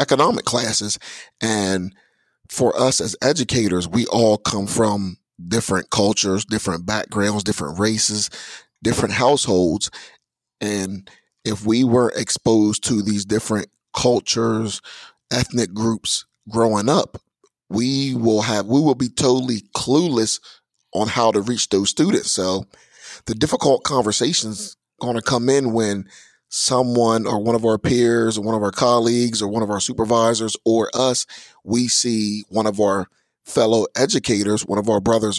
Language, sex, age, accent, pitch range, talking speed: English, male, 30-49, American, 105-120 Hz, 140 wpm